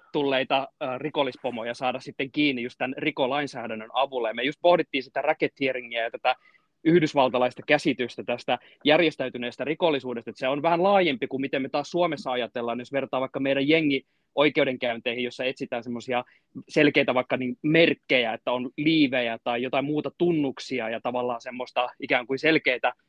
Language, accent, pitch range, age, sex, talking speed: Finnish, native, 125-155 Hz, 20-39, male, 150 wpm